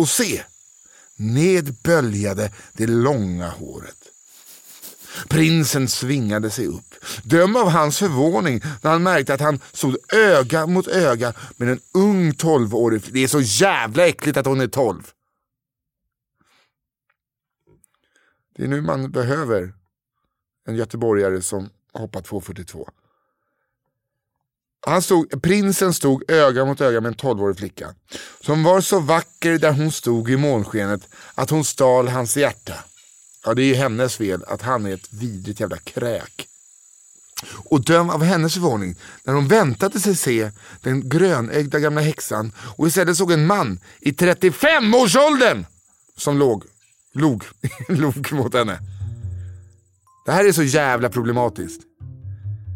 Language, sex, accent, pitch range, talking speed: Swedish, male, native, 110-160 Hz, 135 wpm